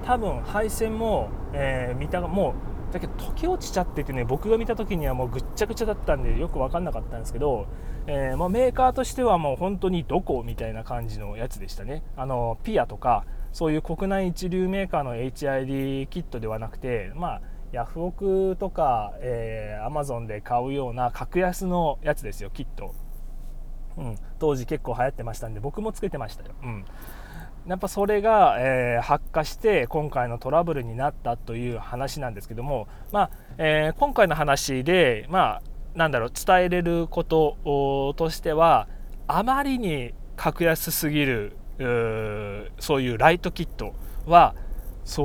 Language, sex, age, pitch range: Japanese, male, 20-39, 120-175 Hz